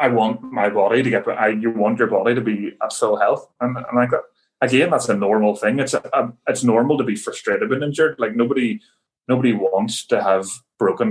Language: English